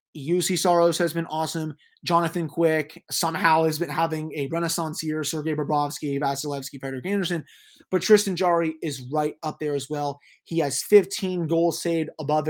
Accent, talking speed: American, 165 wpm